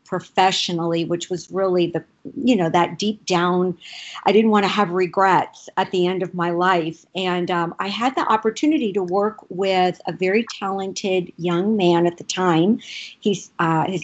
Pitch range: 175-220 Hz